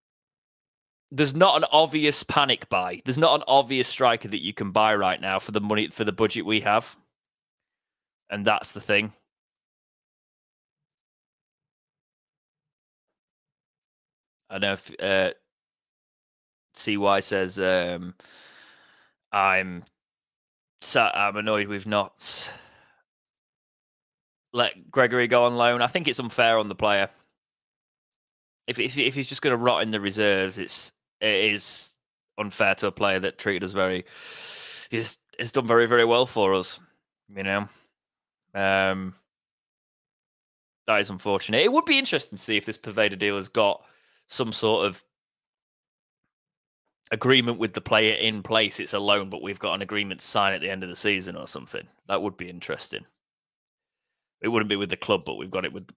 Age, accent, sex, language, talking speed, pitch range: 20-39, British, male, English, 155 wpm, 95-120 Hz